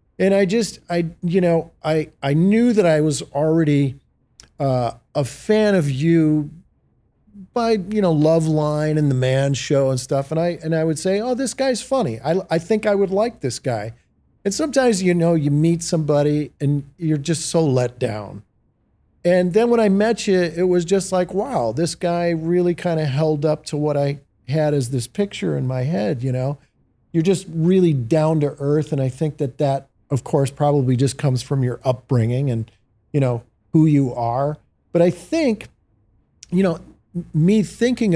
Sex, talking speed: male, 190 wpm